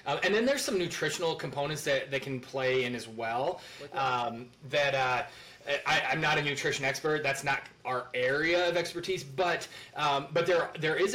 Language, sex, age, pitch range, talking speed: English, male, 20-39, 130-150 Hz, 190 wpm